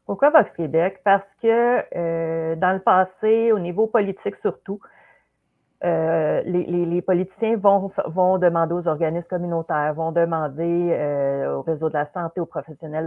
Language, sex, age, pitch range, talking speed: French, female, 40-59, 150-180 Hz, 150 wpm